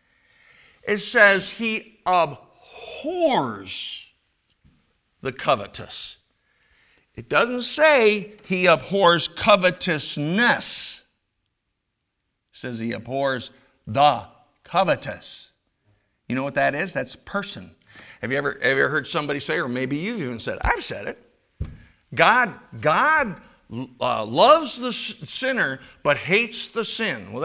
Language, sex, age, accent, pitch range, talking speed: English, male, 50-69, American, 130-210 Hz, 115 wpm